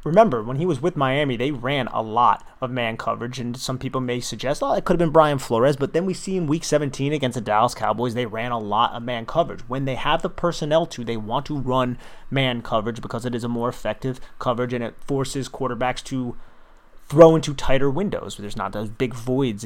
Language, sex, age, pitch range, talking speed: English, male, 30-49, 120-150 Hz, 235 wpm